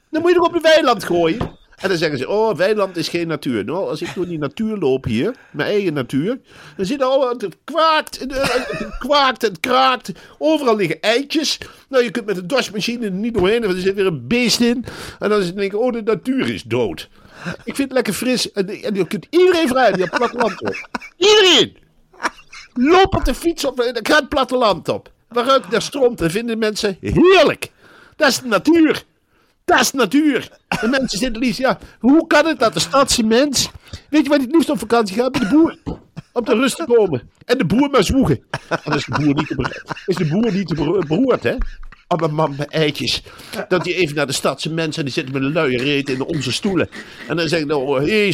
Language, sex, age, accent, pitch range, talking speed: Dutch, male, 50-69, Dutch, 170-260 Hz, 230 wpm